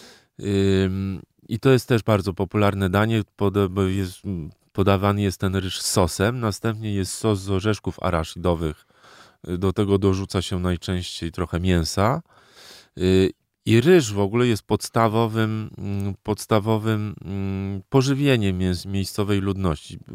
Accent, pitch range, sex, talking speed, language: native, 90-110 Hz, male, 105 wpm, Polish